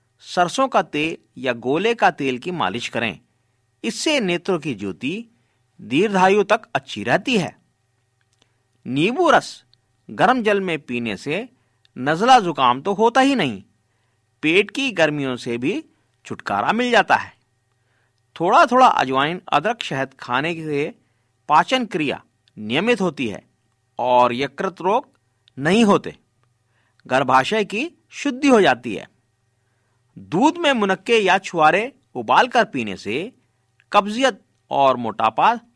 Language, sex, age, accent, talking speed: Hindi, male, 50-69, native, 125 wpm